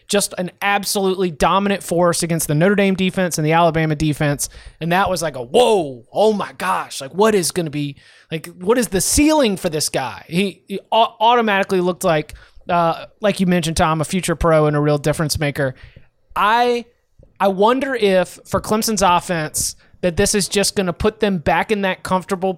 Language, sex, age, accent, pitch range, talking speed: English, male, 20-39, American, 165-200 Hz, 195 wpm